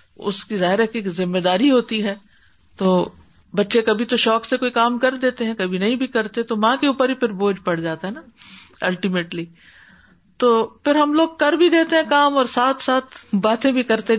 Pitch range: 190-255 Hz